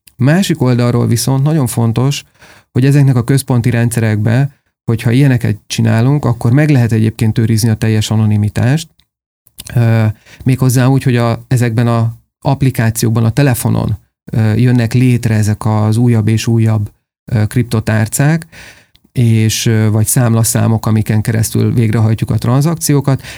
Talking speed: 120 wpm